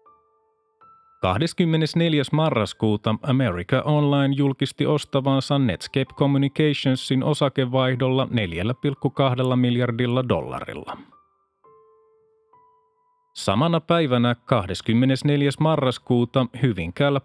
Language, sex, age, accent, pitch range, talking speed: Finnish, male, 30-49, native, 110-145 Hz, 60 wpm